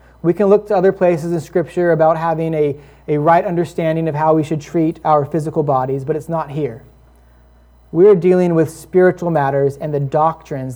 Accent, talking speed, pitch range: American, 195 wpm, 140-170 Hz